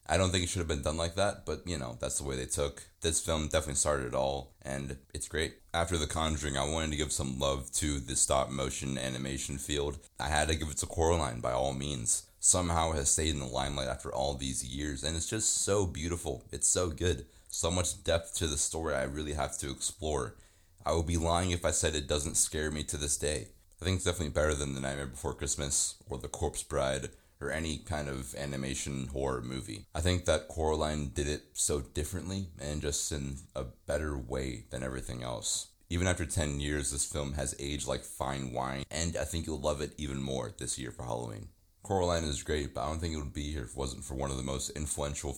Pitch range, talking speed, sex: 70-85 Hz, 235 wpm, male